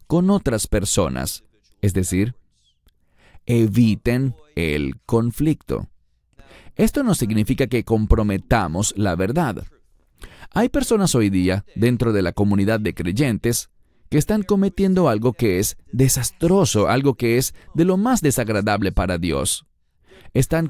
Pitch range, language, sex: 100-155 Hz, English, male